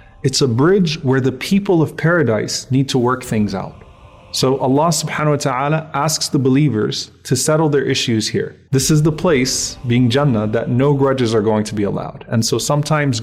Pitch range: 120-160 Hz